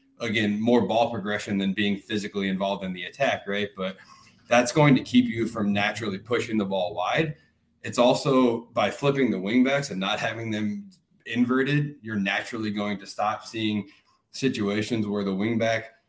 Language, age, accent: English, 20-39, American